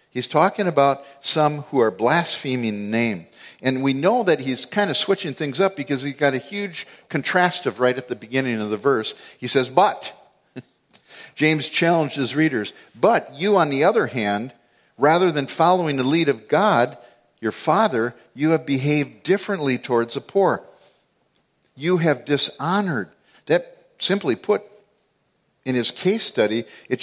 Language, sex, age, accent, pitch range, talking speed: English, male, 50-69, American, 115-160 Hz, 160 wpm